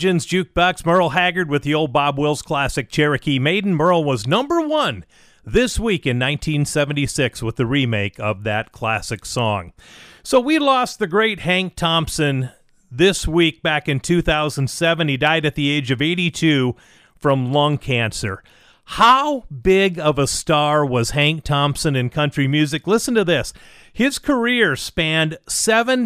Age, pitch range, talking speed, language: 40-59, 145-195 Hz, 155 wpm, English